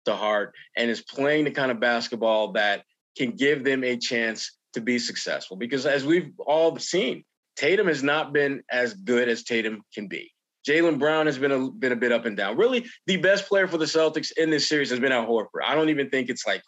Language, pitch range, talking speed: English, 130-185 Hz, 230 wpm